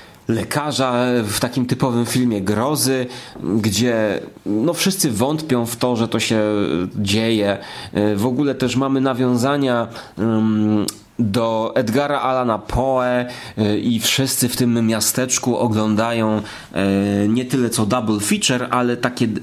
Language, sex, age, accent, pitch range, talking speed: Polish, male, 30-49, native, 115-165 Hz, 115 wpm